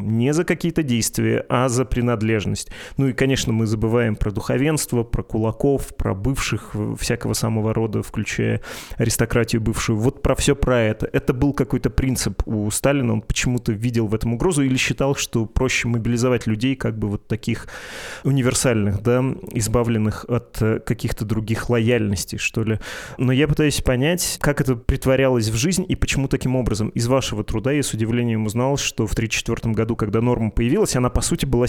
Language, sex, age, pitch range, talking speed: Russian, male, 20-39, 115-135 Hz, 170 wpm